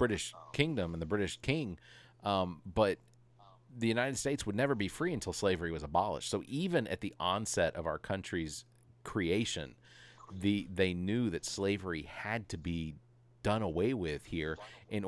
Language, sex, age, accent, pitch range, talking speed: English, male, 40-59, American, 90-115 Hz, 165 wpm